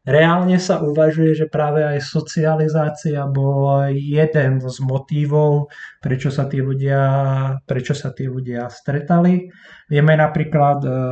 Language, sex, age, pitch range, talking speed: Slovak, male, 20-39, 120-150 Hz, 115 wpm